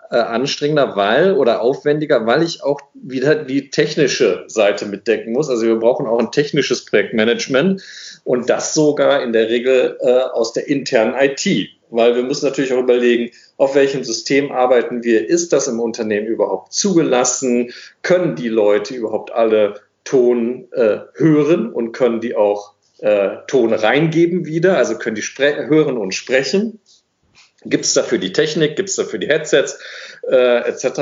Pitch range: 120-160 Hz